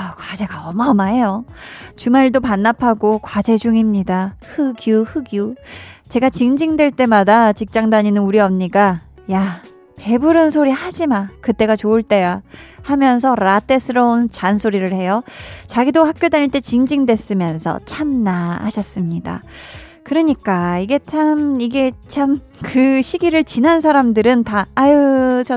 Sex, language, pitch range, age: female, Korean, 205-280 Hz, 20-39